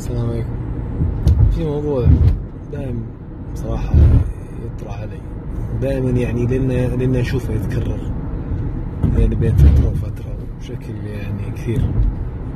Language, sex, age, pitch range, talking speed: Arabic, male, 30-49, 110-130 Hz, 90 wpm